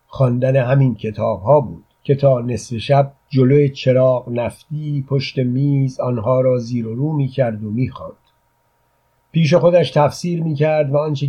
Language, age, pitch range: Persian, 50-69, 115-140 Hz